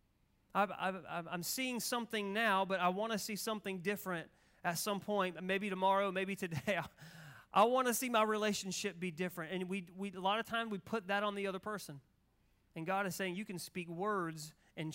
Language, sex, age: English, male, 30-49